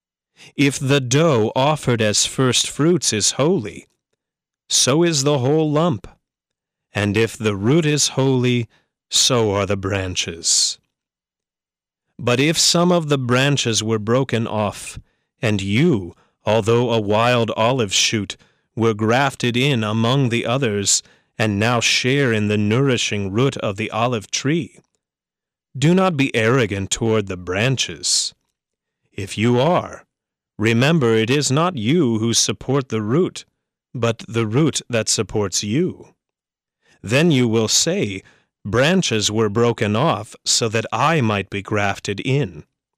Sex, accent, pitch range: male, American, 105-135 Hz